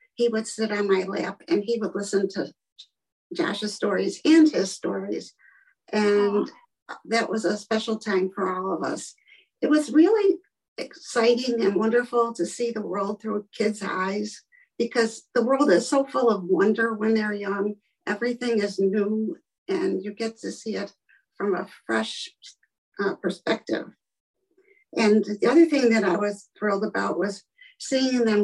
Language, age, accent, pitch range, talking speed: English, 50-69, American, 200-275 Hz, 160 wpm